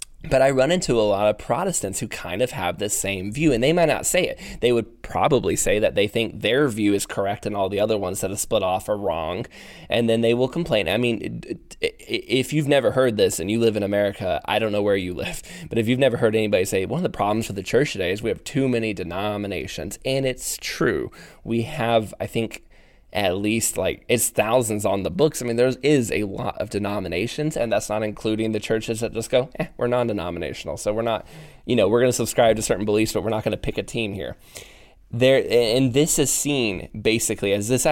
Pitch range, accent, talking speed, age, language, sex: 105-125 Hz, American, 235 wpm, 20-39, English, male